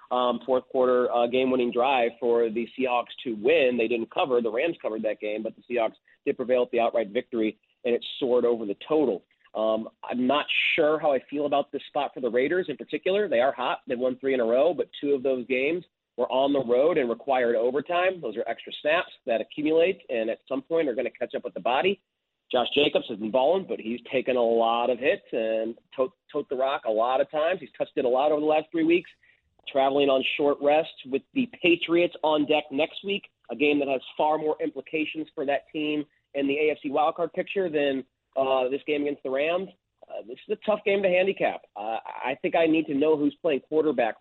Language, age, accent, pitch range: English, 30-49, American, 120-155 Hz